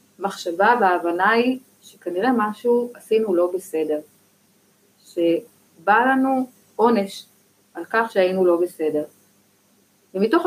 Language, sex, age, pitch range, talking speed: Hebrew, female, 30-49, 180-245 Hz, 95 wpm